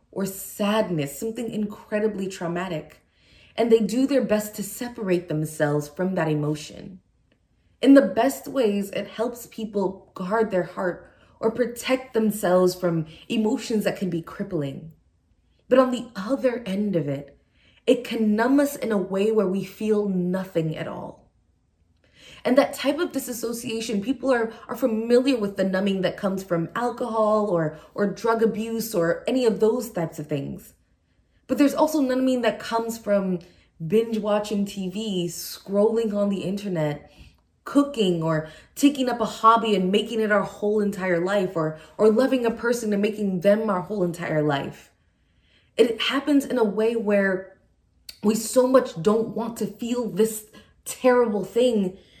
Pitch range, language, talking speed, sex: 180-230 Hz, English, 155 wpm, female